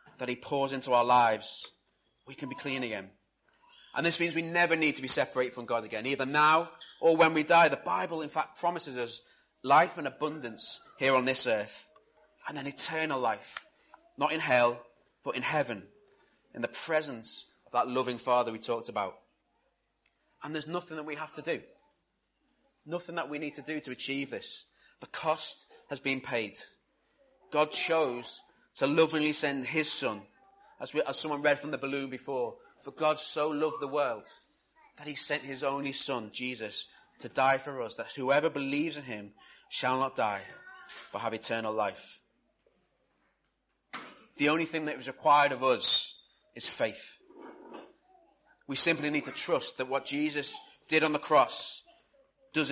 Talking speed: 170 wpm